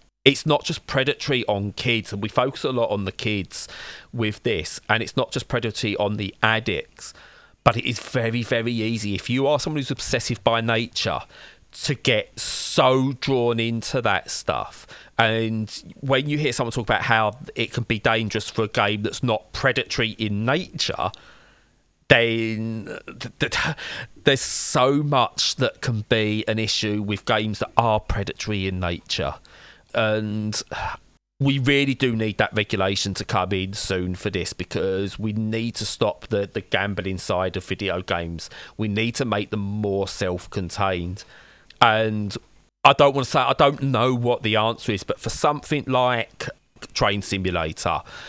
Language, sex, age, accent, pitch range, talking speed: English, male, 40-59, British, 100-120 Hz, 165 wpm